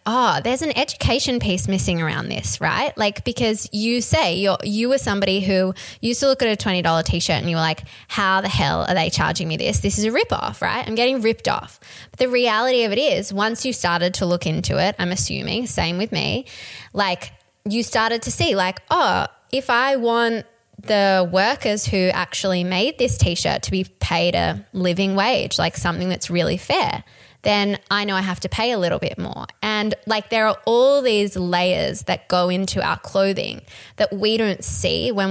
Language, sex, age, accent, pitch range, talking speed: English, female, 10-29, Australian, 180-225 Hz, 205 wpm